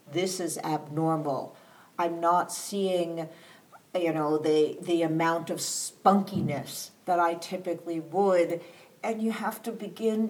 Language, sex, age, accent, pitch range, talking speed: English, female, 60-79, American, 175-220 Hz, 130 wpm